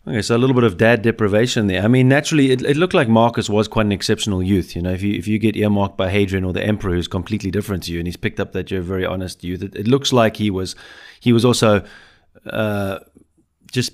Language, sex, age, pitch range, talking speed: English, male, 30-49, 95-110 Hz, 265 wpm